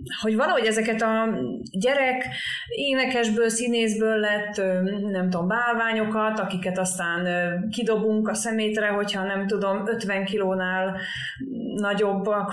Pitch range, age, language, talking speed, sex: 185-230 Hz, 30-49, Hungarian, 105 wpm, female